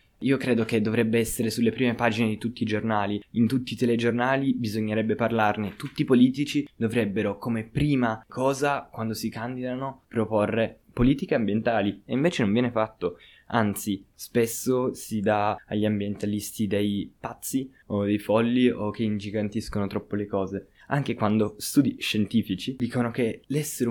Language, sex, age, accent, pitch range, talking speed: Italian, male, 20-39, native, 105-120 Hz, 150 wpm